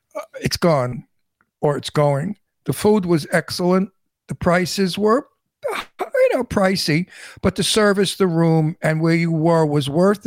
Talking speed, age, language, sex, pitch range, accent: 150 wpm, 60-79, English, male, 145-175 Hz, American